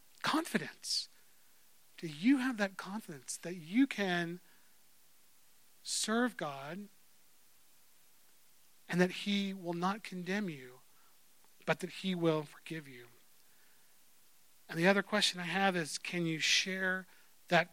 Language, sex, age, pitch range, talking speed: English, male, 40-59, 160-200 Hz, 120 wpm